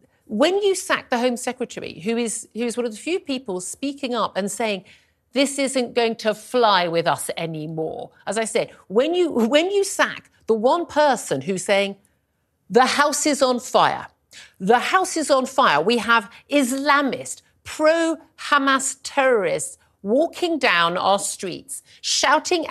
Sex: female